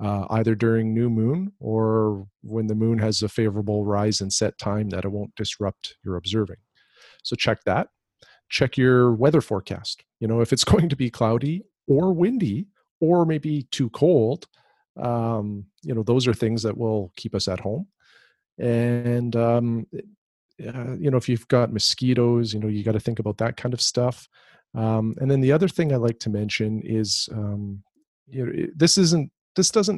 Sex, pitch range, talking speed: male, 110-135 Hz, 185 wpm